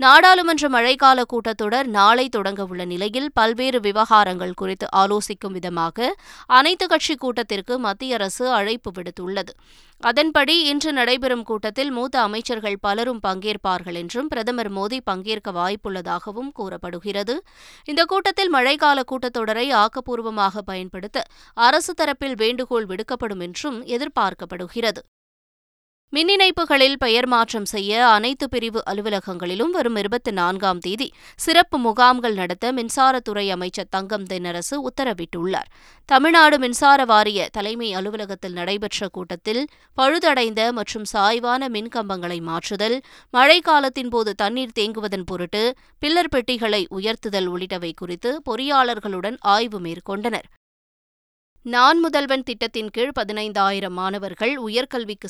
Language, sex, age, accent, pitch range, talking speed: Tamil, female, 20-39, native, 195-255 Hz, 105 wpm